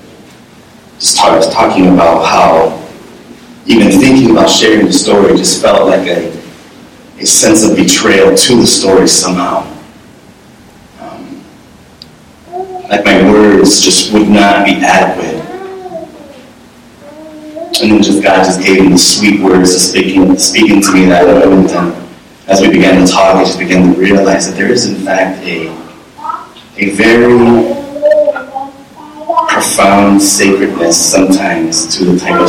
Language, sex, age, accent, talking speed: English, male, 30-49, American, 135 wpm